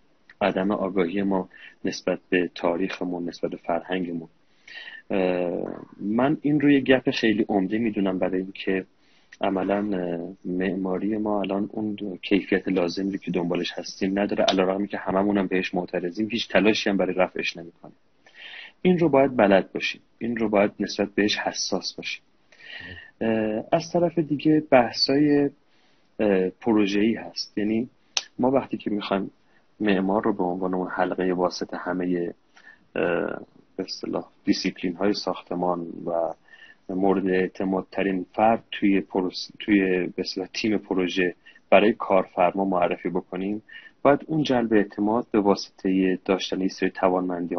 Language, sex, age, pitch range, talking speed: Persian, male, 40-59, 90-110 Hz, 120 wpm